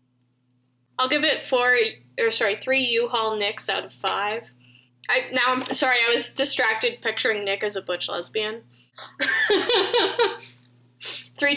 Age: 10-29